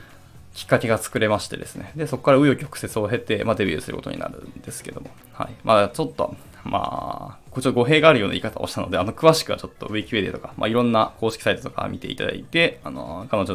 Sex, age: male, 20-39